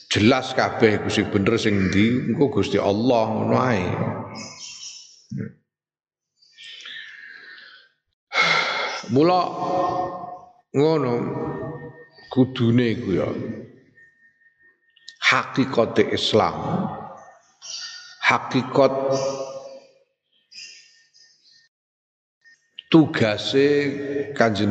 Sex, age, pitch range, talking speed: male, 50-69, 110-155 Hz, 50 wpm